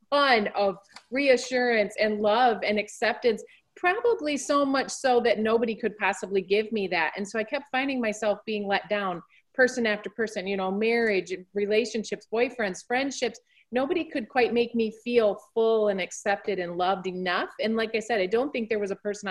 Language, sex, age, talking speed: English, female, 30-49, 185 wpm